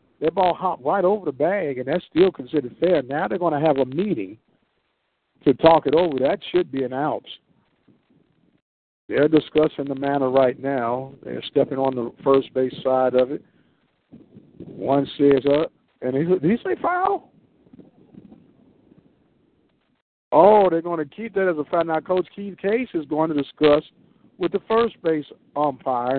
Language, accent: English, American